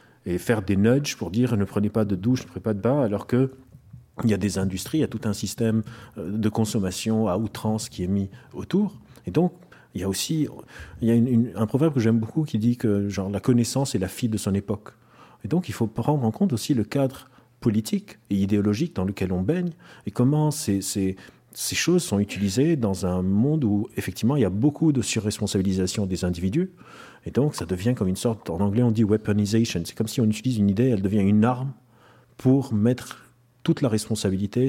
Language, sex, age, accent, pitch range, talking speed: French, male, 40-59, French, 100-120 Hz, 225 wpm